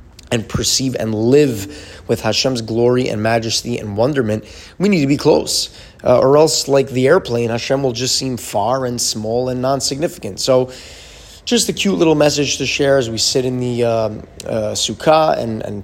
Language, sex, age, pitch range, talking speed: English, male, 20-39, 105-125 Hz, 185 wpm